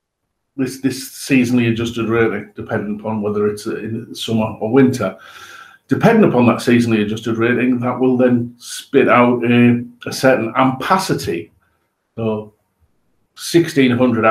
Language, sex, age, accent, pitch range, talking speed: English, male, 50-69, British, 110-125 Hz, 125 wpm